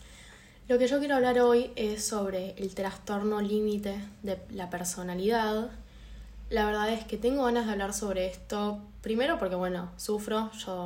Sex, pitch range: female, 185-220 Hz